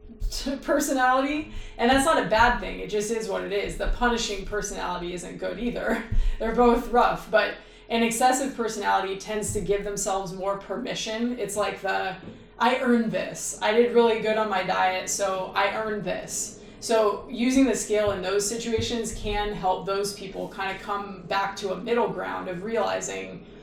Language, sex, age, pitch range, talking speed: English, female, 20-39, 195-230 Hz, 180 wpm